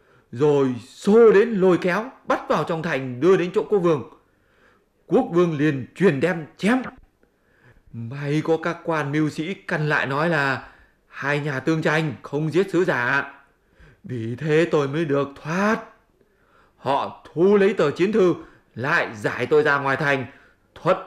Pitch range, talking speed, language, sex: 140-190 Hz, 160 wpm, English, male